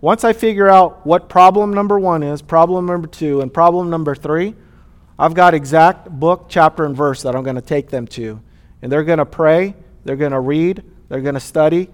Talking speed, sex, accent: 215 wpm, male, American